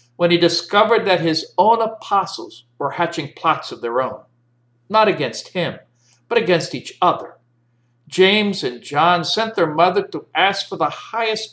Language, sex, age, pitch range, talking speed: English, male, 60-79, 120-190 Hz, 160 wpm